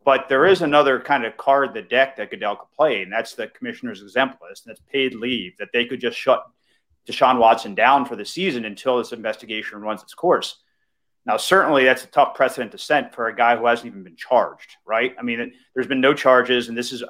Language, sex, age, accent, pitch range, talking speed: English, male, 30-49, American, 120-145 Hz, 230 wpm